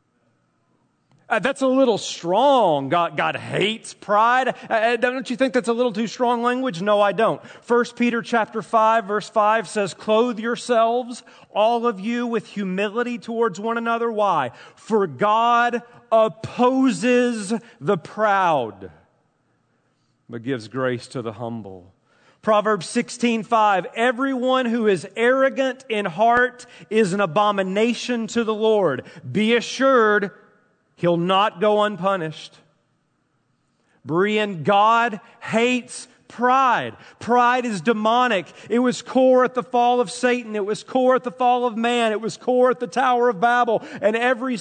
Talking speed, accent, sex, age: 140 wpm, American, male, 30-49